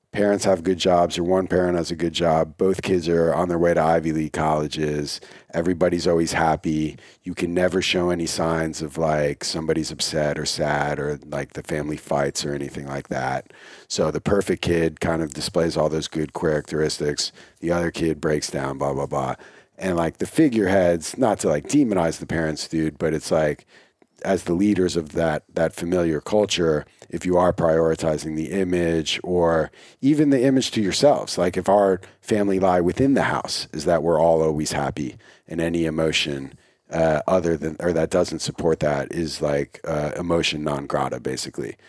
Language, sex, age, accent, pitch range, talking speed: English, male, 40-59, American, 75-90 Hz, 185 wpm